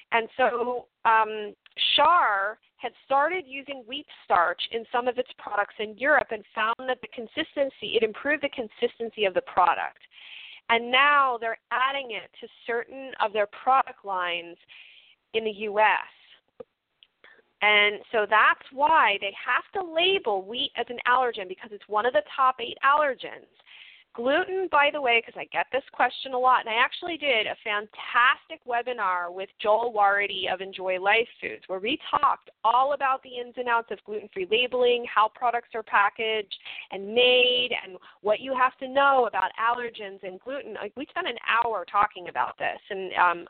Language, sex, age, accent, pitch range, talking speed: English, female, 40-59, American, 205-260 Hz, 170 wpm